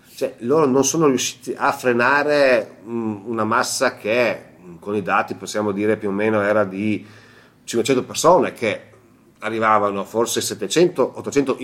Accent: native